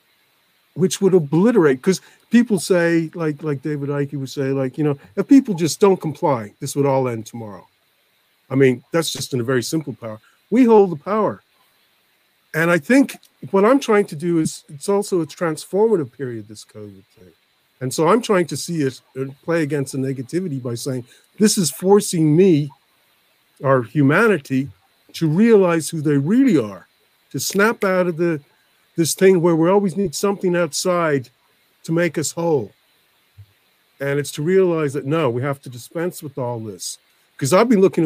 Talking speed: 180 wpm